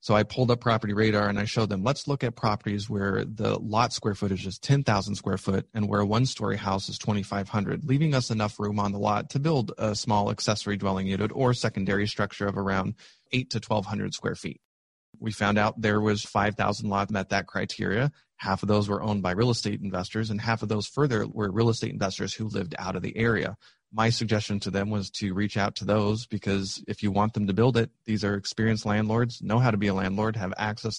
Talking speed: 230 wpm